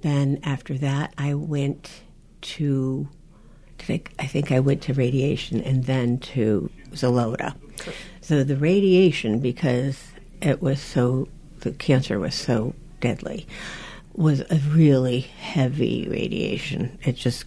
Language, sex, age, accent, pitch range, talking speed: English, female, 60-79, American, 130-165 Hz, 125 wpm